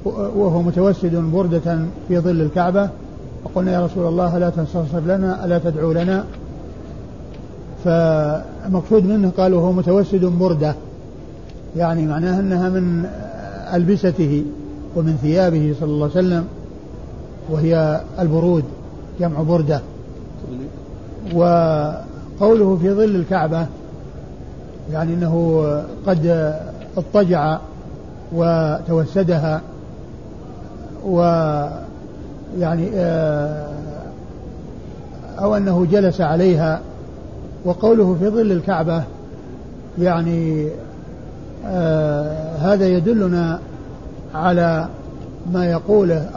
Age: 50-69